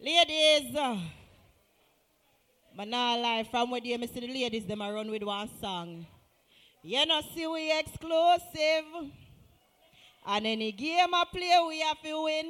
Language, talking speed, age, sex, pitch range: English, 145 wpm, 30-49, female, 210-290 Hz